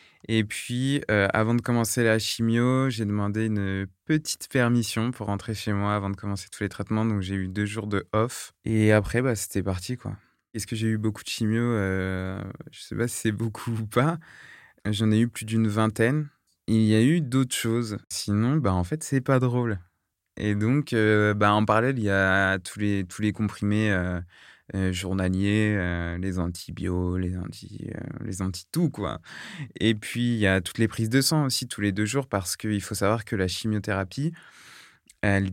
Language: French